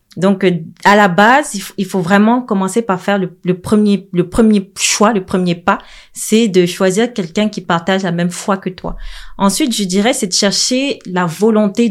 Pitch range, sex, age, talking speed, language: 185-230 Hz, female, 30-49, 180 wpm, French